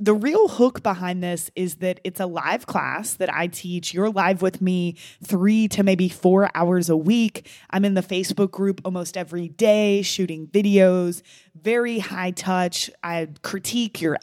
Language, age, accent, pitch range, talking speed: English, 20-39, American, 175-215 Hz, 175 wpm